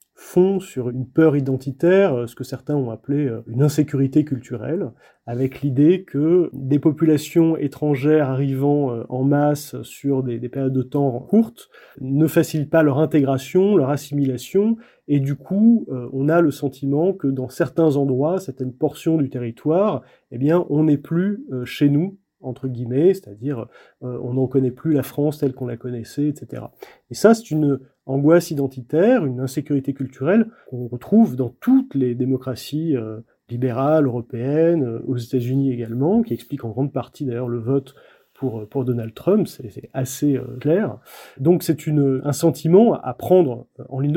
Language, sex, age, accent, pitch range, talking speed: French, male, 30-49, French, 130-165 Hz, 160 wpm